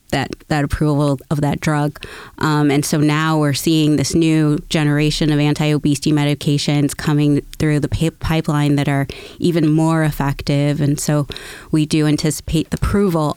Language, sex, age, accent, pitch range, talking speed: English, female, 20-39, American, 145-160 Hz, 155 wpm